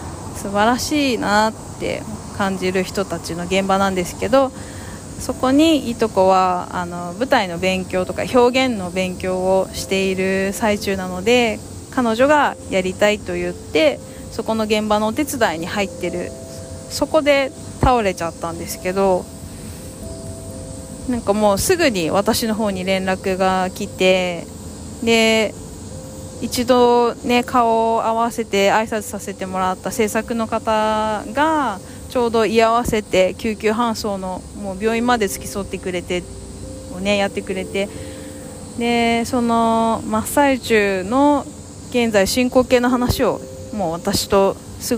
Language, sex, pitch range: Japanese, female, 185-230 Hz